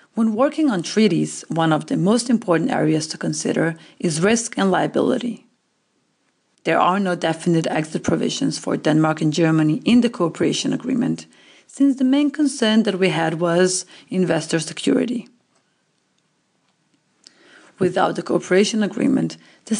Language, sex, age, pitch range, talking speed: English, female, 40-59, 160-235 Hz, 135 wpm